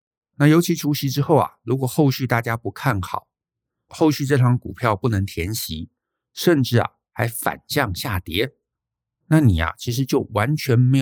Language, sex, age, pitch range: Chinese, male, 50-69, 95-130 Hz